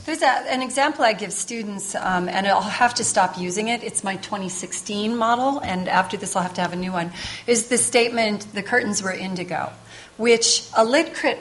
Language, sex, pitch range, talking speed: English, female, 190-245 Hz, 210 wpm